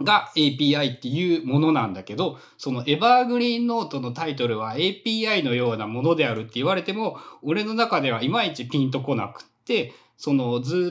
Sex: male